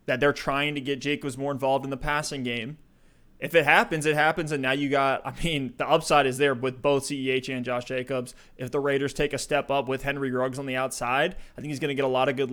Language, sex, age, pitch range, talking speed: English, male, 20-39, 135-150 Hz, 270 wpm